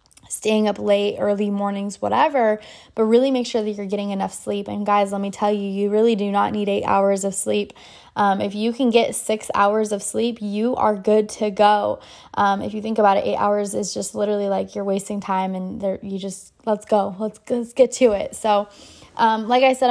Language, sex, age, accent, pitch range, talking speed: English, female, 20-39, American, 195-215 Hz, 225 wpm